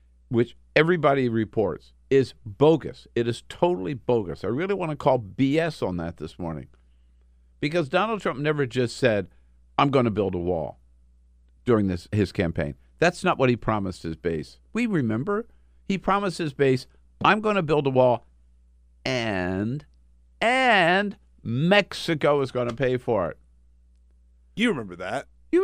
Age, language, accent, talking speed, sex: 50-69, English, American, 155 wpm, male